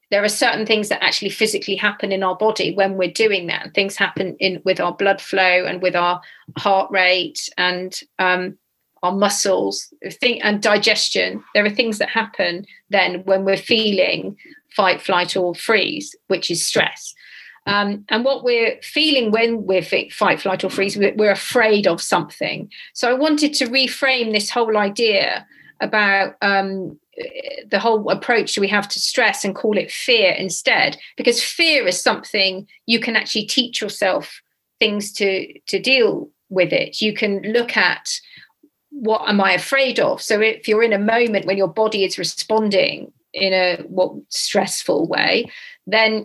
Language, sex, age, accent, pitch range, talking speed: English, female, 40-59, British, 190-230 Hz, 170 wpm